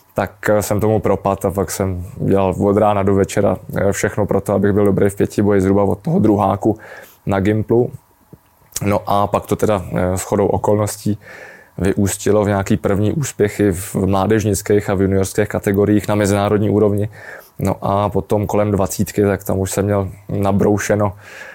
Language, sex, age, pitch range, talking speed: Czech, male, 20-39, 100-110 Hz, 165 wpm